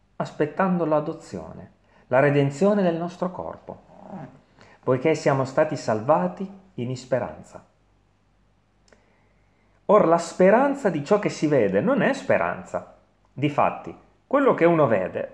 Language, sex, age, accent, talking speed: Italian, male, 40-59, native, 115 wpm